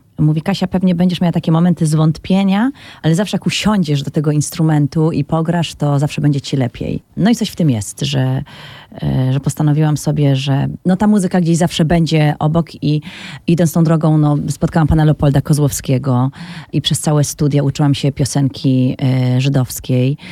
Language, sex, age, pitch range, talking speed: Polish, female, 30-49, 140-165 Hz, 160 wpm